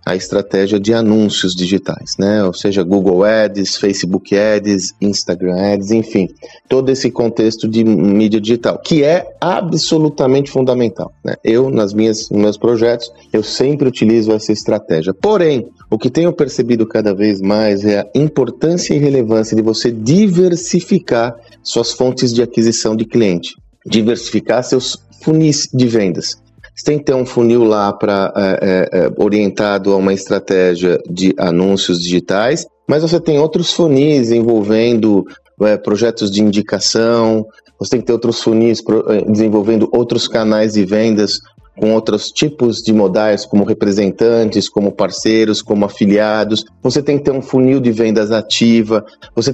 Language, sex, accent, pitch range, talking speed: Portuguese, male, Brazilian, 105-135 Hz, 140 wpm